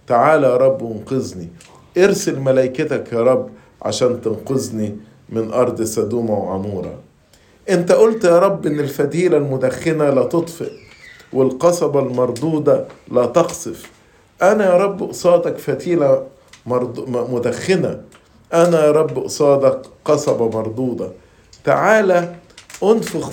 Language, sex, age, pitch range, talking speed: English, male, 50-69, 125-170 Hz, 110 wpm